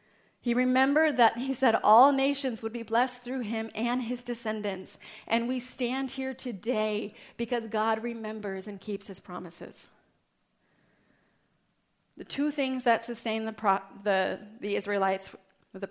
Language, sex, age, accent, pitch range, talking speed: English, female, 30-49, American, 205-245 Hz, 140 wpm